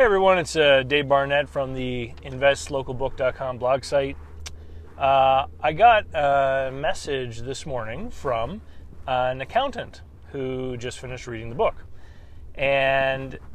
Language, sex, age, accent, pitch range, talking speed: English, male, 30-49, American, 115-140 Hz, 120 wpm